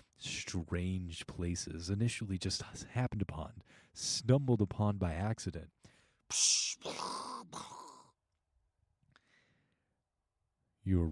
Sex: male